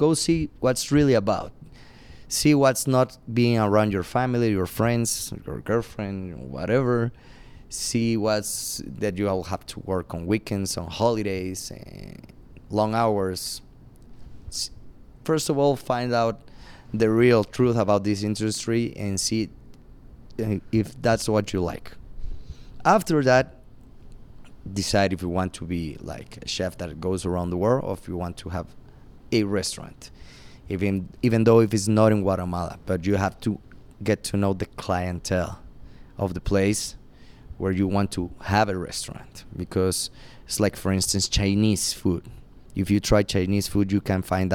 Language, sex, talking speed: English, male, 155 wpm